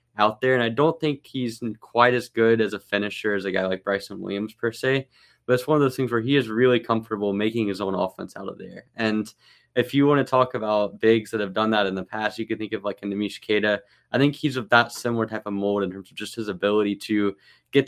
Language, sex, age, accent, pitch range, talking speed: English, male, 10-29, American, 100-120 Hz, 265 wpm